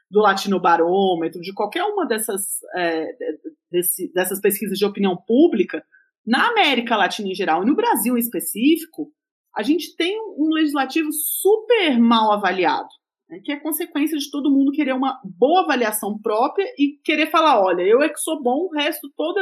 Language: Portuguese